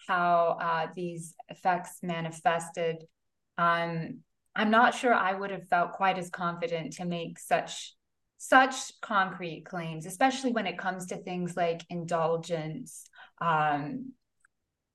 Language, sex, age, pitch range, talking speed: English, female, 20-39, 175-235 Hz, 125 wpm